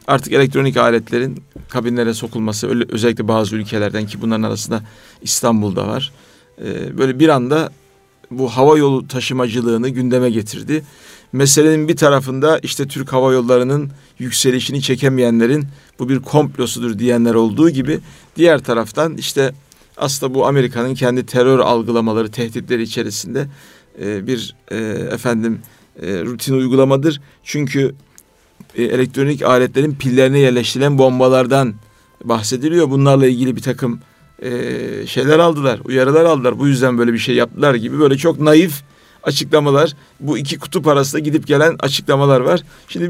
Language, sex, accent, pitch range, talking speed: Turkish, male, native, 120-145 Hz, 125 wpm